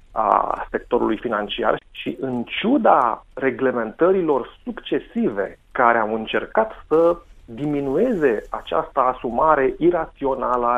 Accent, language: native, Romanian